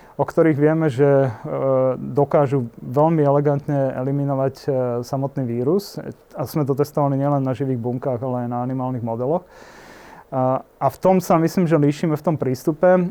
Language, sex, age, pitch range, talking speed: Slovak, male, 30-49, 135-155 Hz, 150 wpm